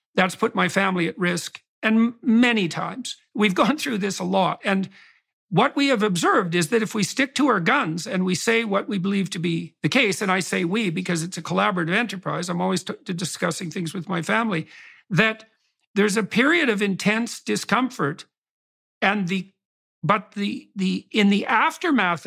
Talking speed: 190 wpm